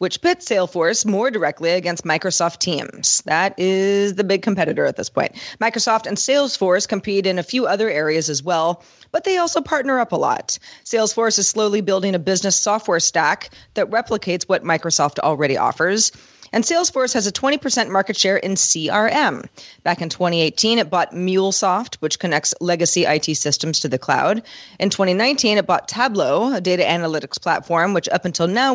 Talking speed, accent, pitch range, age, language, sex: 175 wpm, American, 170-225 Hz, 30-49, English, female